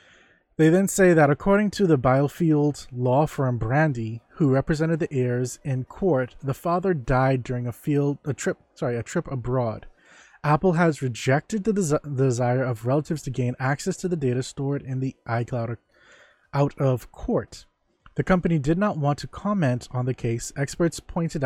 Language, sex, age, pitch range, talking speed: English, male, 20-39, 125-165 Hz, 175 wpm